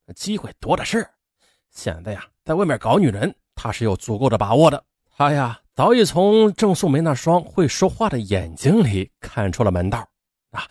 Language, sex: Chinese, male